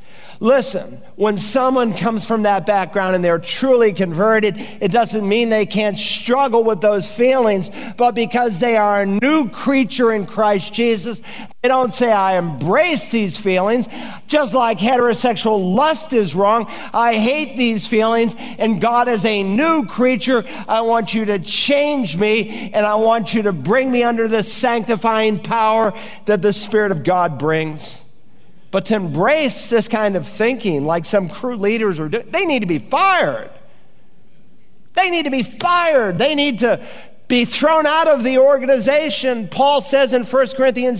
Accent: American